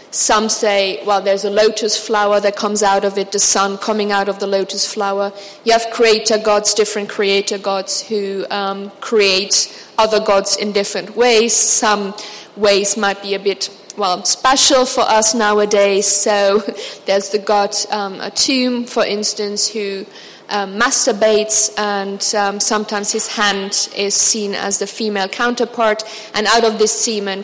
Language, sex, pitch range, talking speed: English, female, 200-220 Hz, 160 wpm